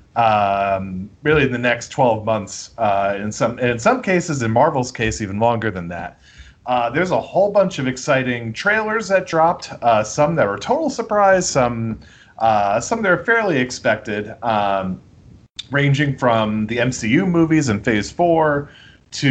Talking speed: 160 wpm